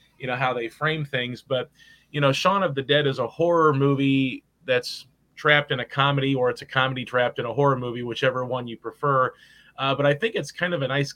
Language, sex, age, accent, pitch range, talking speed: English, male, 30-49, American, 120-145 Hz, 235 wpm